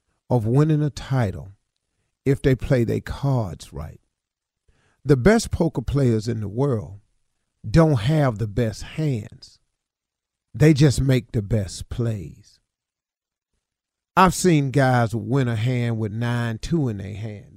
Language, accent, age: English, American, 40-59